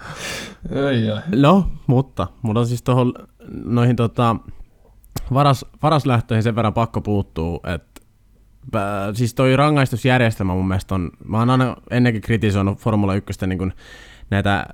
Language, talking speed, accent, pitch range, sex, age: Finnish, 120 wpm, native, 95-120 Hz, male, 20-39